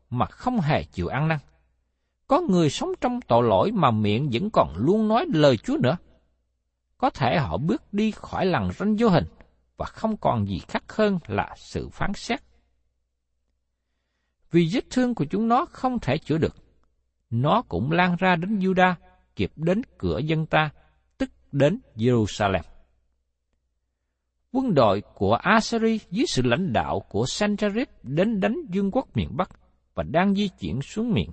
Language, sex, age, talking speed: Vietnamese, male, 60-79, 165 wpm